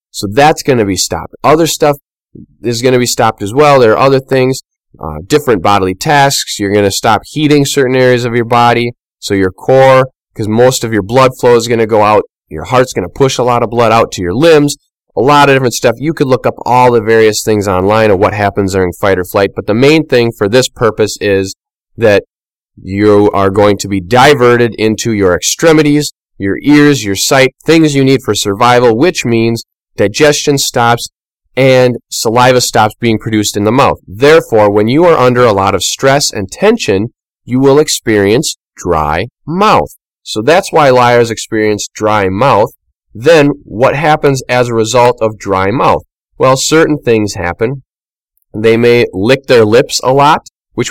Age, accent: 20-39, American